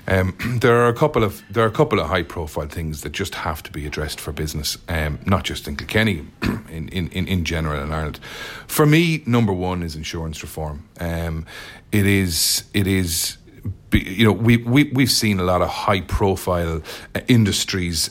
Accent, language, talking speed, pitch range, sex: Irish, English, 190 wpm, 85-105 Hz, male